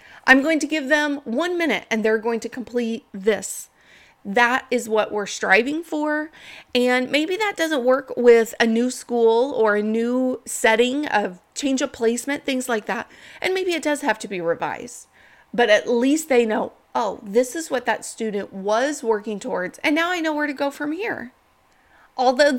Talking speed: 190 wpm